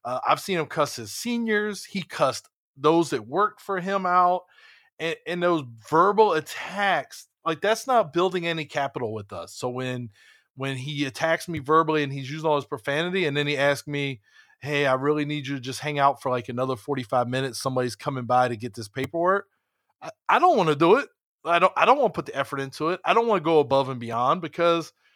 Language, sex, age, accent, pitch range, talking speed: English, male, 20-39, American, 135-180 Hz, 225 wpm